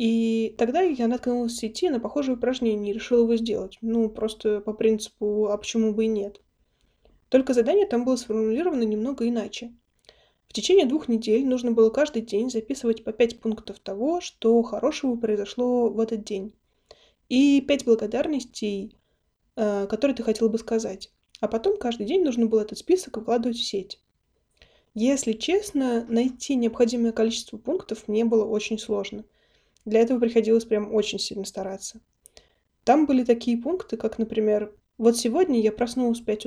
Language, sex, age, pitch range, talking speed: Russian, female, 20-39, 215-250 Hz, 160 wpm